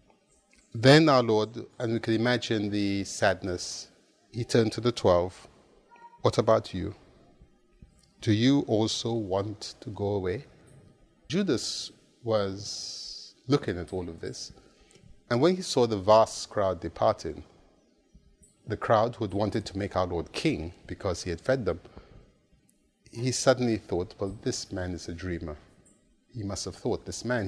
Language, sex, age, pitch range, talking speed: English, male, 30-49, 100-125 Hz, 150 wpm